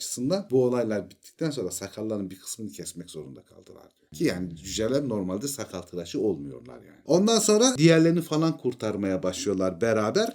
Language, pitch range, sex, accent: Turkish, 100-145 Hz, male, native